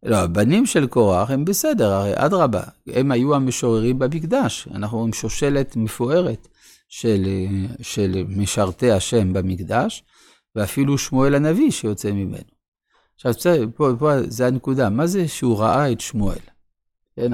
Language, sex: Hebrew, male